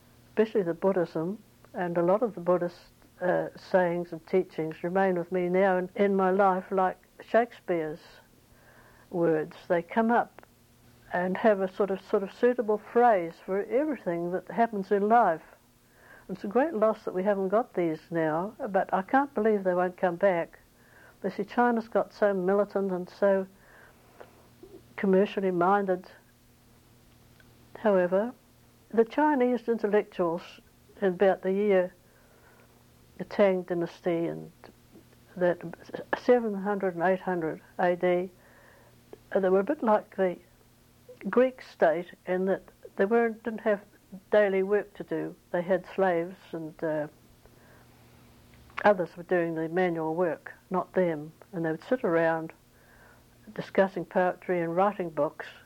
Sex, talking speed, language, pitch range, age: female, 140 wpm, English, 175-205 Hz, 60-79